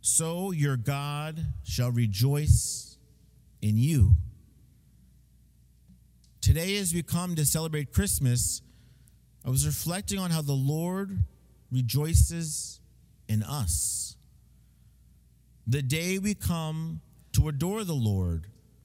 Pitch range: 90-150 Hz